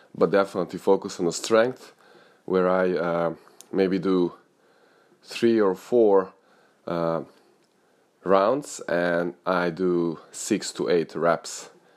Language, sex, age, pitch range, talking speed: English, male, 20-39, 85-100 Hz, 115 wpm